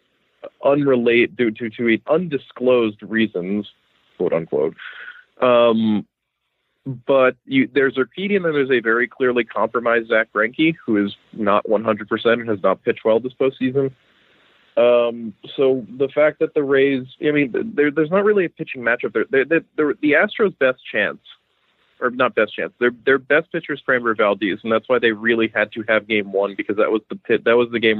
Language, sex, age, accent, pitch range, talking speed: English, male, 30-49, American, 110-140 Hz, 185 wpm